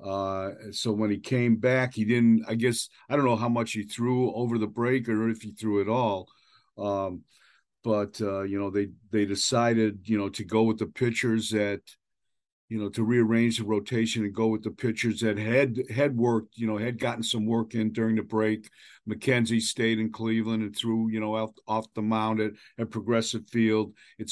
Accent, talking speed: American, 205 wpm